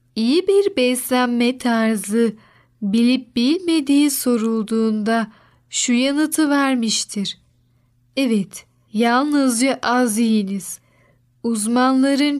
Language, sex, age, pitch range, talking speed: Turkish, female, 10-29, 215-275 Hz, 75 wpm